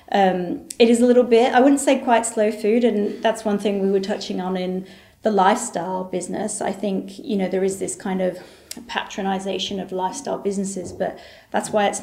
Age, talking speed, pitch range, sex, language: 30-49, 205 wpm, 185-215 Hz, female, English